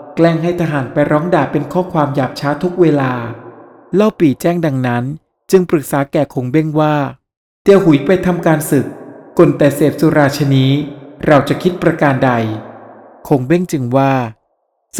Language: Thai